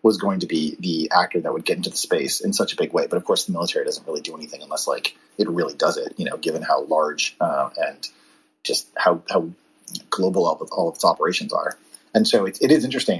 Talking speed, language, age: 255 wpm, English, 30-49